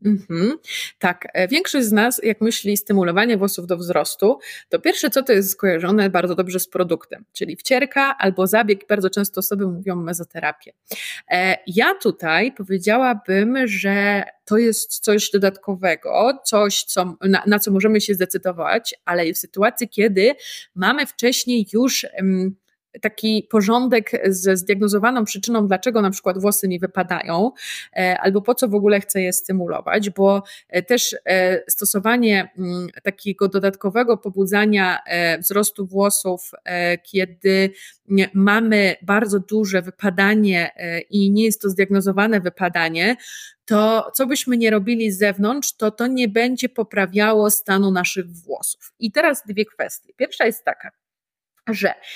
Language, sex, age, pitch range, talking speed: Polish, female, 20-39, 190-225 Hz, 135 wpm